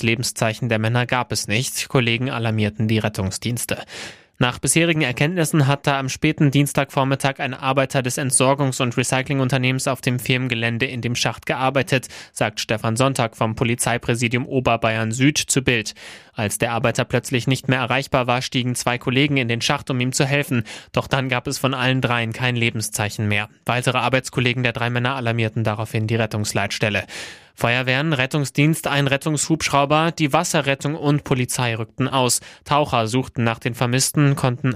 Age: 20-39